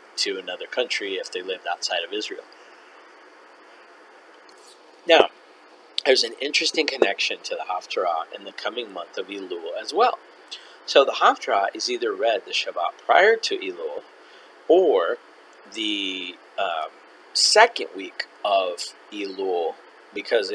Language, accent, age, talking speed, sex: English, American, 40-59, 130 wpm, male